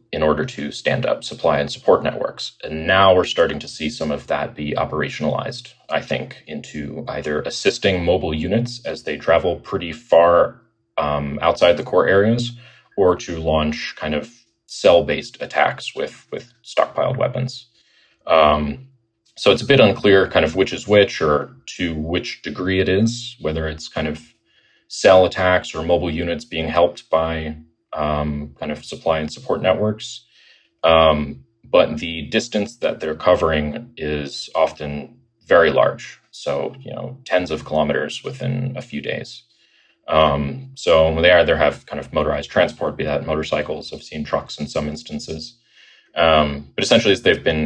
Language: English